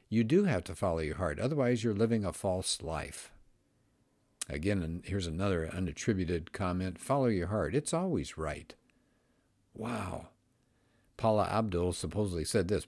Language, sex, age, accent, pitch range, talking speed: English, male, 60-79, American, 85-120 Hz, 145 wpm